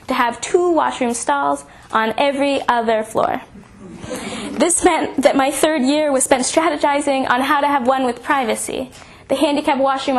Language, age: English, 10-29